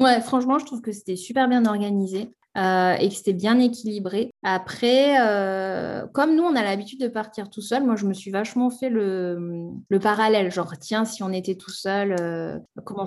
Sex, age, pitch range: female, 20-39, 180-225 Hz